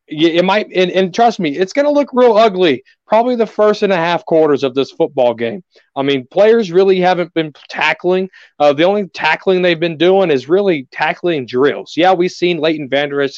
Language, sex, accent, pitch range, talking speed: English, male, American, 145-180 Hz, 205 wpm